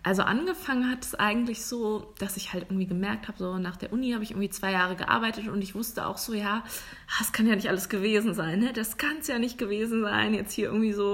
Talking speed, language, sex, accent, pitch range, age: 255 wpm, German, female, German, 170-210 Hz, 20-39